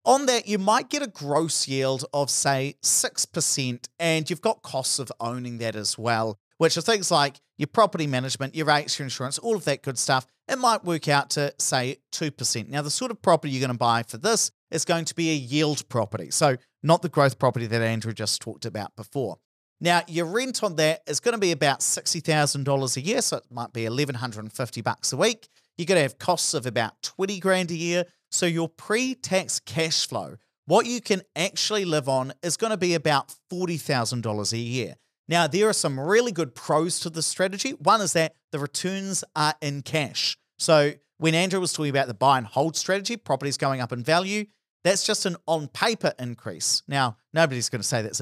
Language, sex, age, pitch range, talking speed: English, male, 40-59, 125-175 Hz, 210 wpm